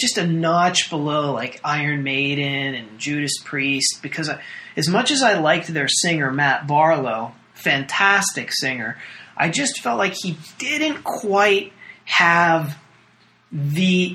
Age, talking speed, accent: 30-49, 130 wpm, American